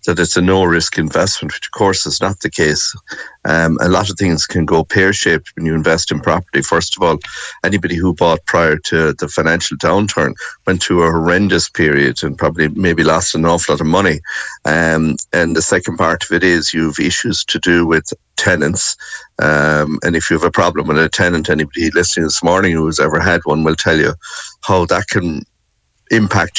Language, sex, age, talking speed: English, male, 60-79, 205 wpm